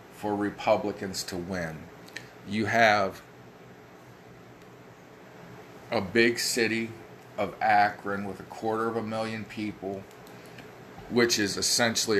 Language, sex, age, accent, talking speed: English, male, 40-59, American, 105 wpm